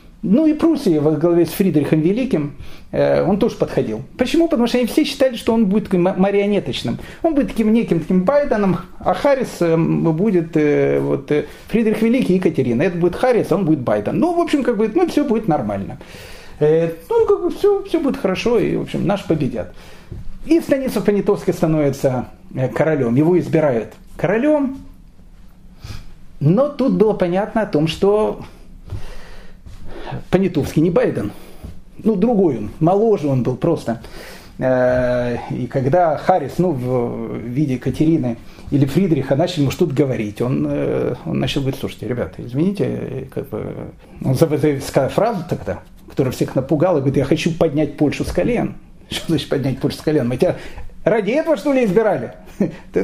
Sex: male